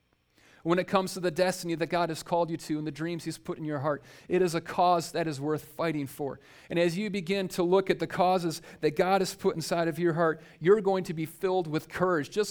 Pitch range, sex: 130-175 Hz, male